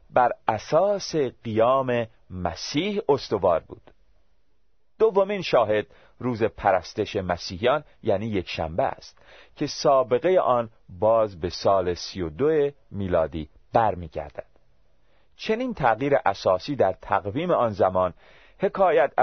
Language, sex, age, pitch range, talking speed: Persian, male, 40-59, 95-140 Hz, 105 wpm